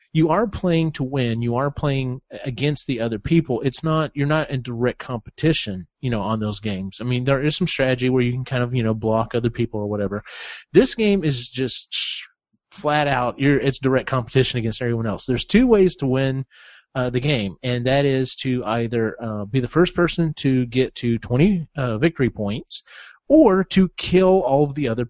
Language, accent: English, American